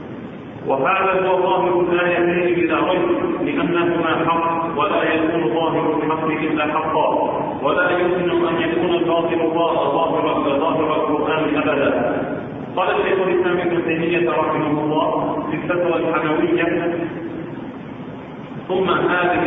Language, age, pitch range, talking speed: Arabic, 40-59, 165-180 Hz, 110 wpm